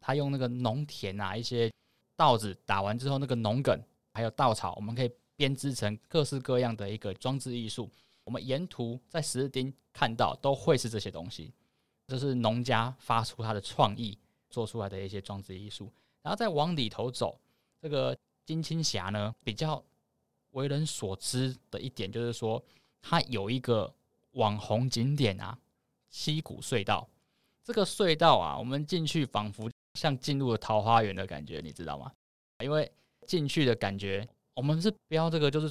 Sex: male